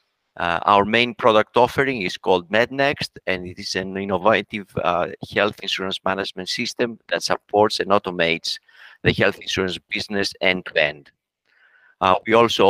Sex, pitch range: male, 90-110 Hz